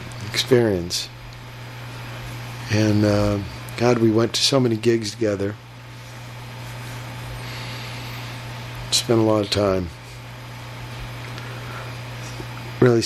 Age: 50-69